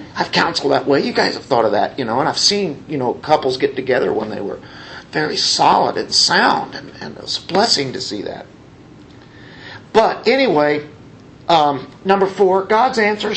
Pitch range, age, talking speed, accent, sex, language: 145-225 Hz, 50-69, 195 wpm, American, male, English